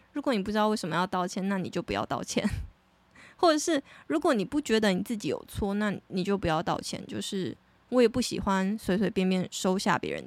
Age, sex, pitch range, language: 20-39, female, 195-230 Hz, Chinese